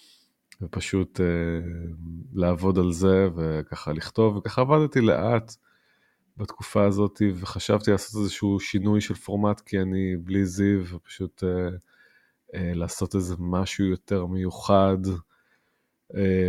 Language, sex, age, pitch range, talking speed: Hebrew, male, 20-39, 90-100 Hz, 110 wpm